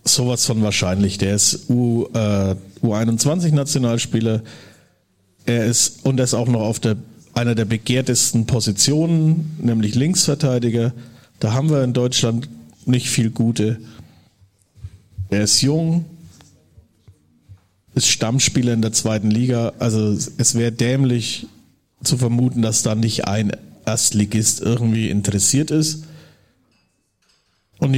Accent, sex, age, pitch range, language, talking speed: German, male, 50-69, 105-130 Hz, German, 120 wpm